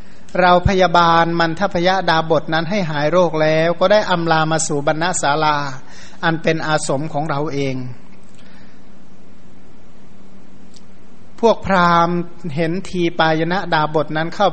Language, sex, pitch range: Thai, male, 150-180 Hz